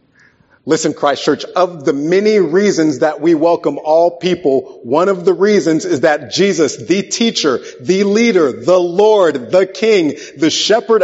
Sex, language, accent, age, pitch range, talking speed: male, English, American, 40-59, 130-195 Hz, 160 wpm